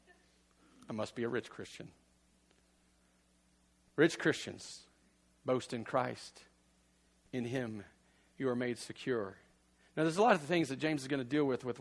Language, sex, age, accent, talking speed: English, male, 40-59, American, 160 wpm